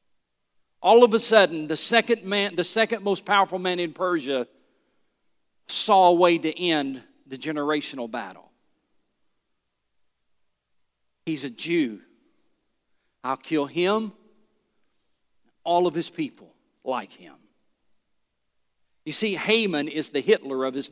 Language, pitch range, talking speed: English, 140-210 Hz, 120 wpm